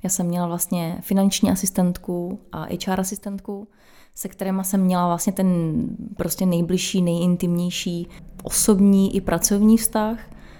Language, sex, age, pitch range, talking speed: Czech, female, 20-39, 180-205 Hz, 125 wpm